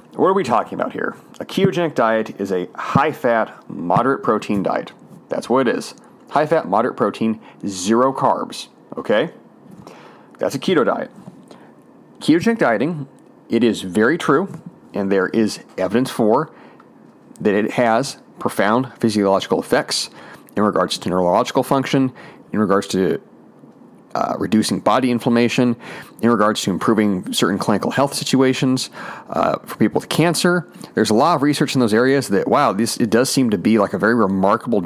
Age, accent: 40-59, American